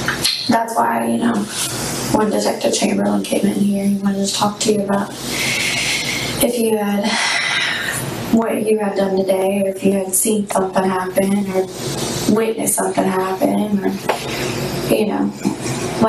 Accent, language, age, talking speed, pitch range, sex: American, English, 20-39, 145 wpm, 185-210 Hz, female